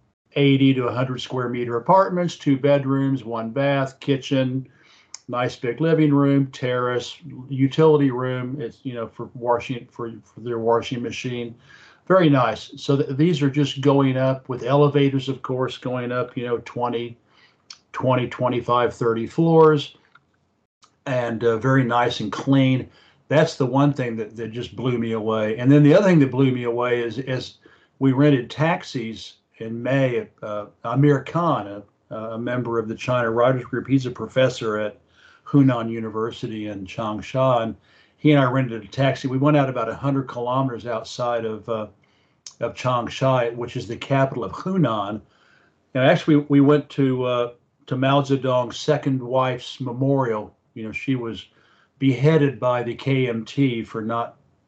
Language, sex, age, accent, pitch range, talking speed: English, male, 50-69, American, 115-135 Hz, 160 wpm